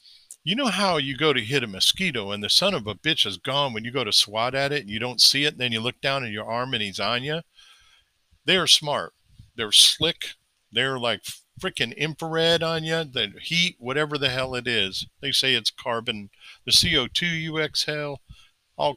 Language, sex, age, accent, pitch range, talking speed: English, male, 50-69, American, 110-145 Hz, 210 wpm